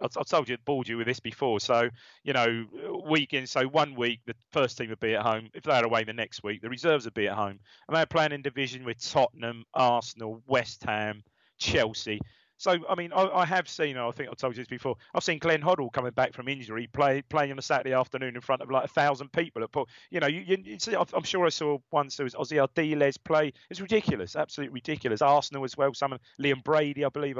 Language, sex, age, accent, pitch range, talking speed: English, male, 30-49, British, 115-155 Hz, 245 wpm